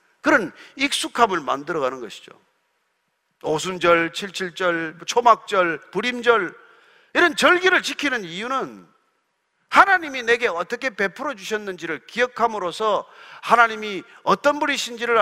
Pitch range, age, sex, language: 210-330 Hz, 40-59, male, Korean